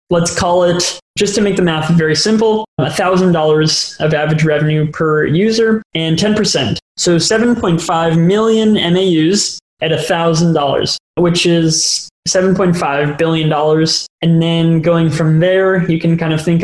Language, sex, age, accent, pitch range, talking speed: English, male, 20-39, American, 160-185 Hz, 175 wpm